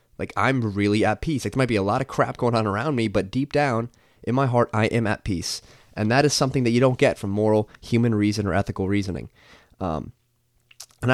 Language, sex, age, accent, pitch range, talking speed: English, male, 20-39, American, 105-125 Hz, 235 wpm